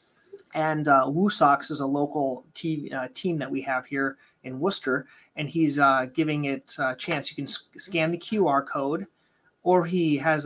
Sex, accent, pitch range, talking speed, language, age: male, American, 145-170 Hz, 170 wpm, English, 30-49